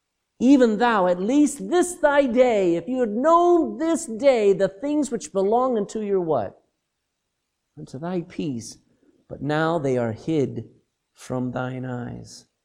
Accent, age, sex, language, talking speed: American, 50-69, male, English, 145 wpm